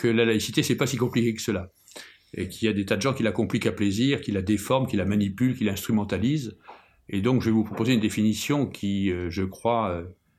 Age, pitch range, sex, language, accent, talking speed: 50-69, 95-120 Hz, male, French, French, 250 wpm